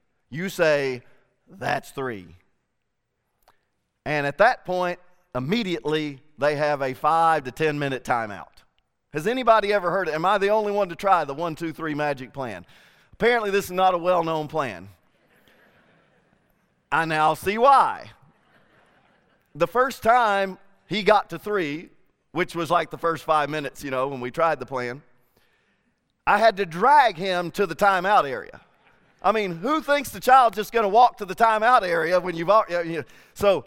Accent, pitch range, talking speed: American, 150-205 Hz, 170 wpm